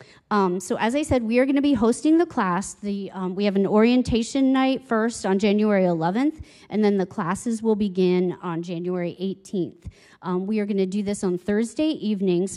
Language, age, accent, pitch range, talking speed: English, 30-49, American, 185-225 Hz, 200 wpm